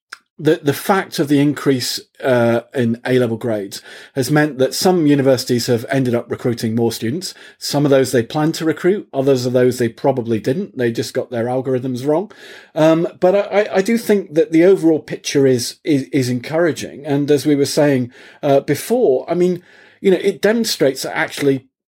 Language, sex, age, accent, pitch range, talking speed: English, male, 40-59, British, 130-165 Hz, 190 wpm